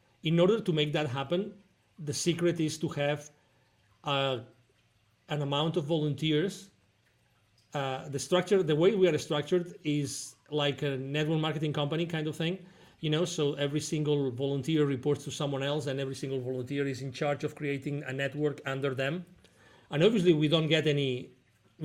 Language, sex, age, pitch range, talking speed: English, male, 40-59, 135-160 Hz, 170 wpm